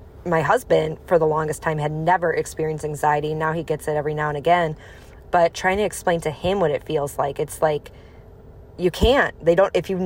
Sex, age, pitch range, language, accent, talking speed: female, 20-39, 155-185 Hz, English, American, 215 wpm